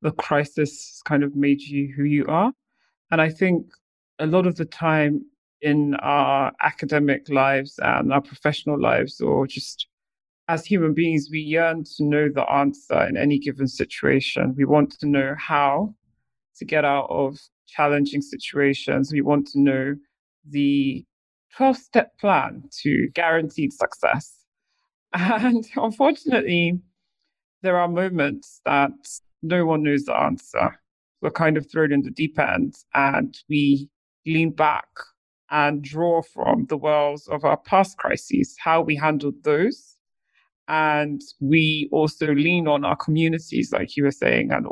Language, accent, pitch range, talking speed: English, British, 145-170 Hz, 145 wpm